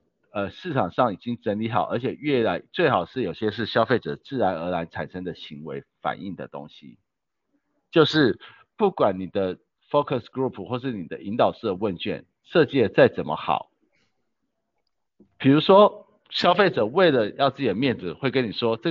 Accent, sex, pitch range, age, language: native, male, 105-145 Hz, 50-69, Chinese